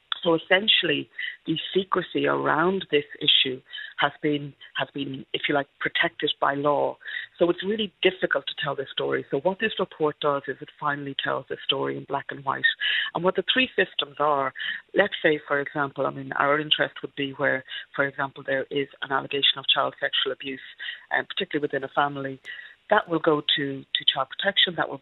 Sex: female